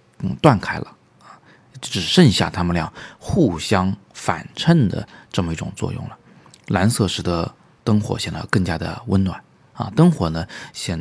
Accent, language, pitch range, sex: native, Chinese, 90-120 Hz, male